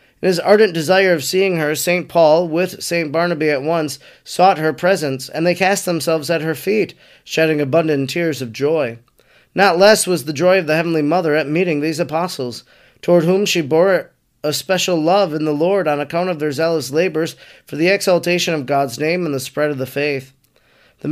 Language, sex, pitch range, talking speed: English, male, 145-175 Hz, 200 wpm